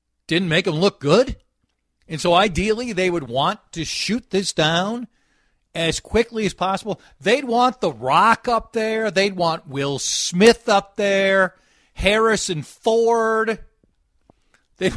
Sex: male